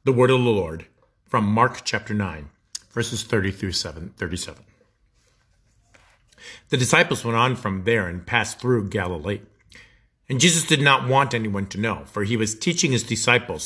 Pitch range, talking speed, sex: 105-140 Hz, 165 wpm, male